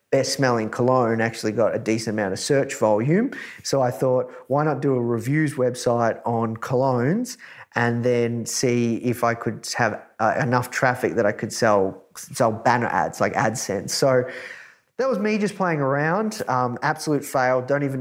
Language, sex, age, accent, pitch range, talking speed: English, male, 30-49, Australian, 120-140 Hz, 175 wpm